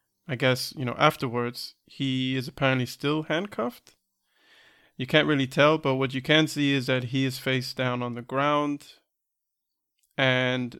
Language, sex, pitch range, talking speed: English, male, 125-140 Hz, 160 wpm